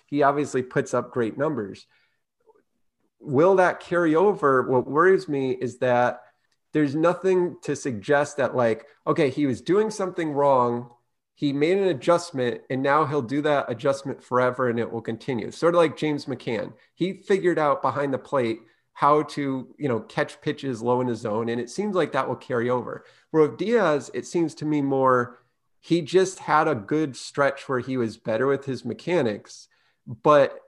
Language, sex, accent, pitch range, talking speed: English, male, American, 125-155 Hz, 180 wpm